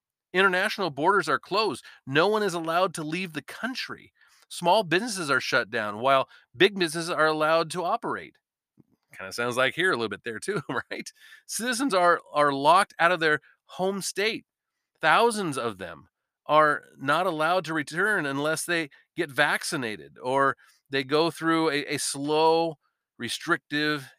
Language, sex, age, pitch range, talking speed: English, male, 40-59, 135-170 Hz, 160 wpm